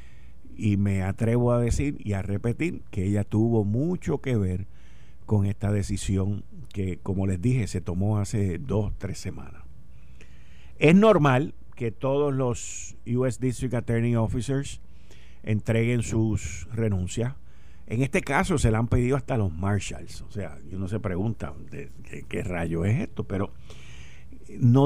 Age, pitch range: 50-69, 95-120 Hz